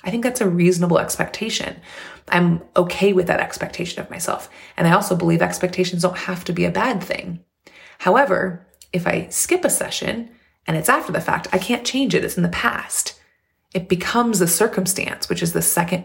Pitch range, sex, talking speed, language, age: 180-220 Hz, female, 195 wpm, English, 30-49